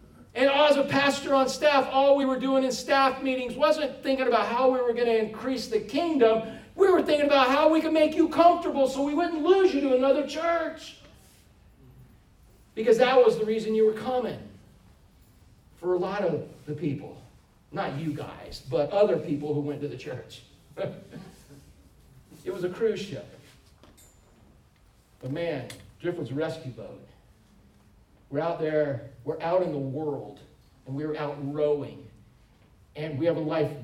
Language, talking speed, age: English, 170 wpm, 50-69